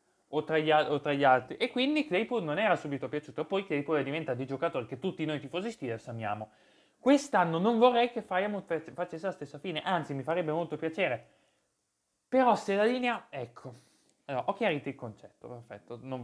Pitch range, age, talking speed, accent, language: 130-185 Hz, 20-39, 190 wpm, native, Italian